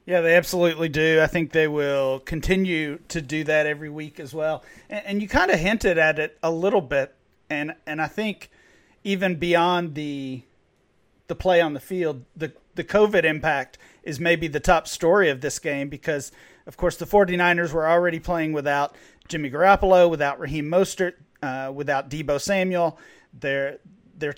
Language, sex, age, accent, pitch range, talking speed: English, male, 40-59, American, 150-185 Hz, 175 wpm